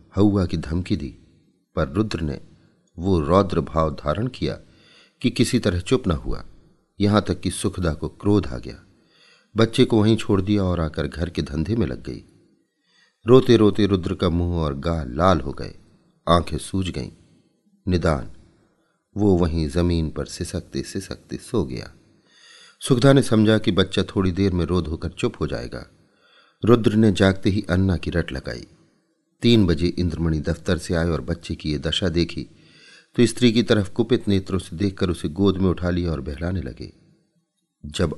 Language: Hindi